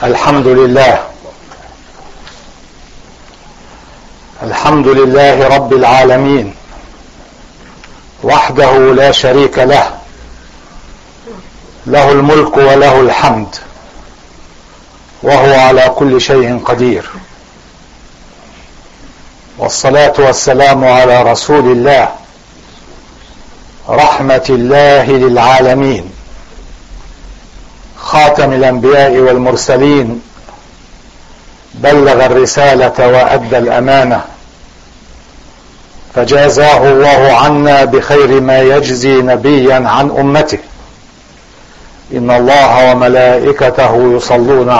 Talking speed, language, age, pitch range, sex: 65 wpm, English, 60-79, 125-140 Hz, male